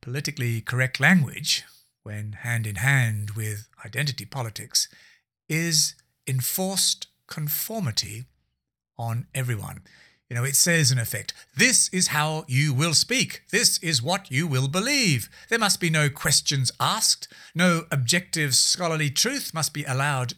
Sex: male